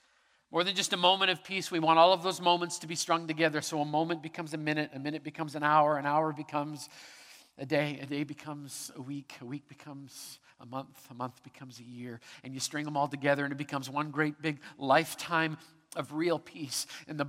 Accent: American